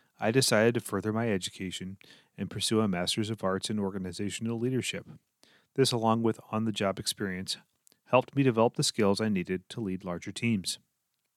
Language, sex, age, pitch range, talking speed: English, male, 30-49, 100-130 Hz, 165 wpm